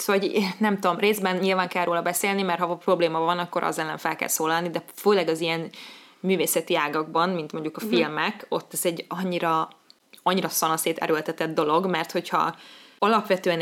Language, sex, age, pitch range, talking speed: Hungarian, female, 20-39, 165-190 Hz, 170 wpm